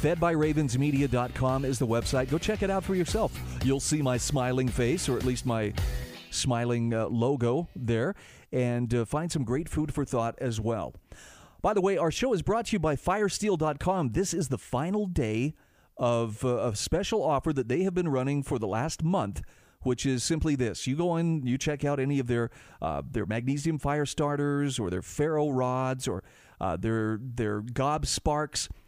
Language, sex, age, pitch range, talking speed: English, male, 40-59, 120-160 Hz, 190 wpm